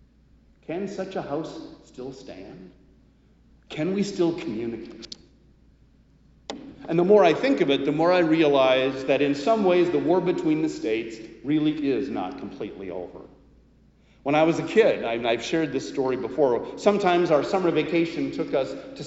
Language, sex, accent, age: English, male, American, 50-69